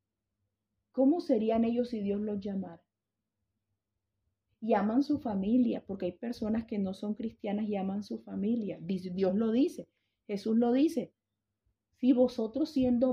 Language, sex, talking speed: English, female, 135 wpm